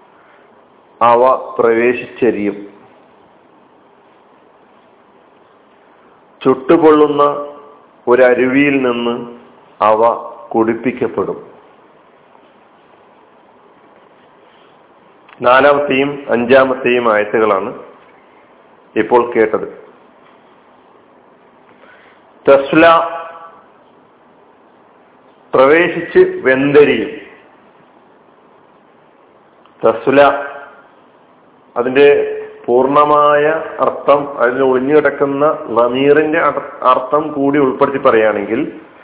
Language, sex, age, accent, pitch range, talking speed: Malayalam, male, 50-69, native, 125-150 Hz, 40 wpm